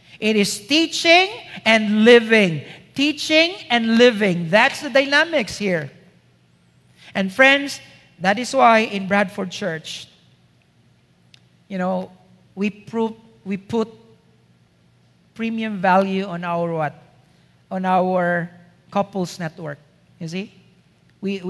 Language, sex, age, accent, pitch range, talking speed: English, male, 50-69, Filipino, 195-240 Hz, 105 wpm